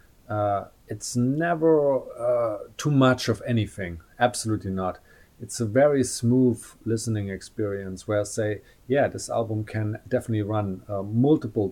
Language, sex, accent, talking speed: English, male, German, 140 wpm